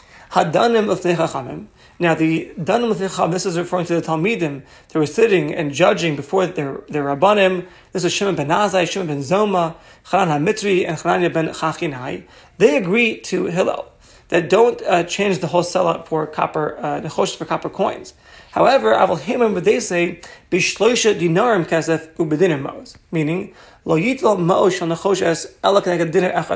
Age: 30-49